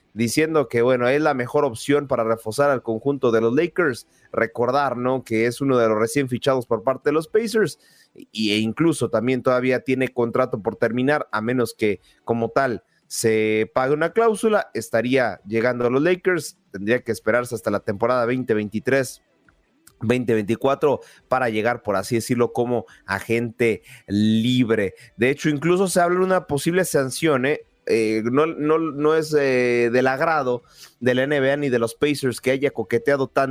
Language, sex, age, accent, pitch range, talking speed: Spanish, male, 30-49, Mexican, 120-150 Hz, 165 wpm